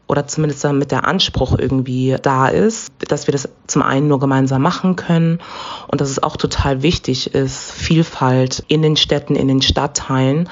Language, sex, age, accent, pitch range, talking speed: German, female, 20-39, German, 135-170 Hz, 175 wpm